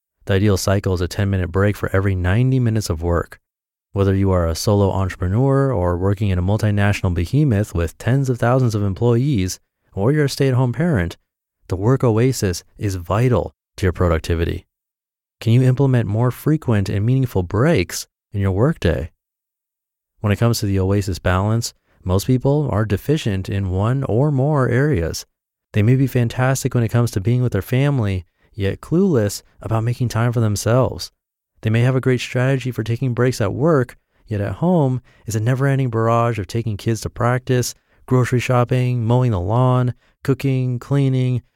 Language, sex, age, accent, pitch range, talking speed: English, male, 30-49, American, 95-125 Hz, 175 wpm